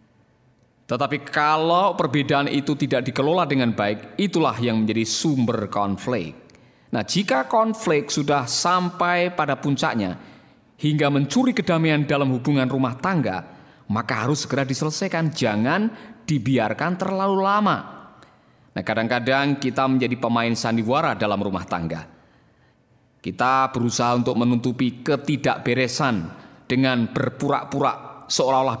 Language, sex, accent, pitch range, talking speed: Indonesian, male, native, 120-150 Hz, 110 wpm